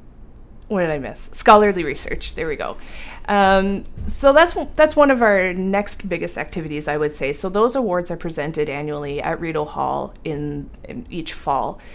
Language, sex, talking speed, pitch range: English, female, 175 wpm, 150-195 Hz